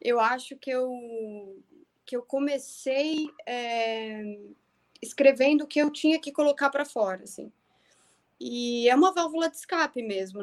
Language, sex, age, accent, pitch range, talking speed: Portuguese, female, 20-39, Brazilian, 225-290 Hz, 130 wpm